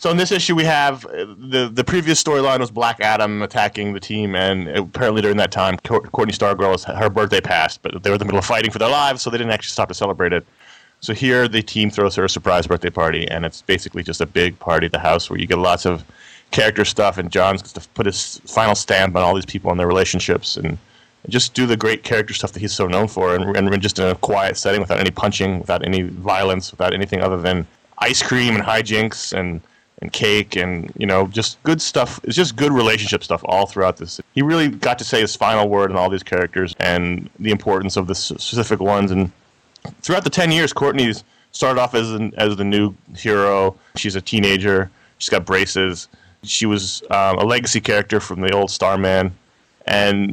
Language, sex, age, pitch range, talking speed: English, male, 30-49, 95-115 Hz, 225 wpm